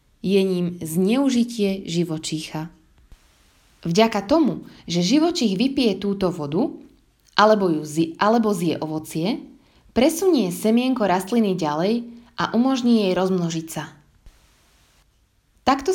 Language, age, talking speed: Slovak, 20-39, 100 wpm